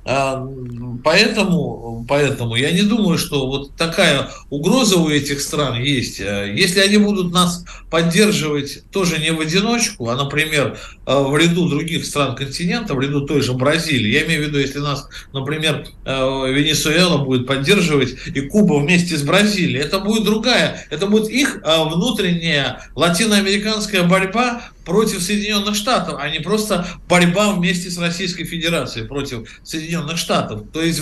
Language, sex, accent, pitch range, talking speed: Russian, male, native, 135-185 Hz, 145 wpm